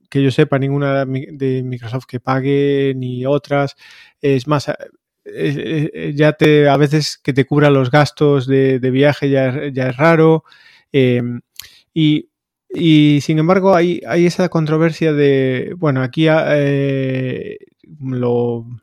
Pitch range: 130-150 Hz